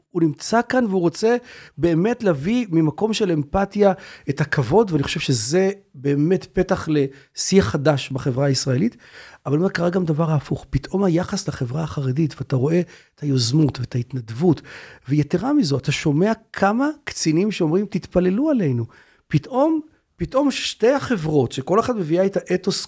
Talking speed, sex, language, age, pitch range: 145 wpm, male, Hebrew, 40-59, 145-195 Hz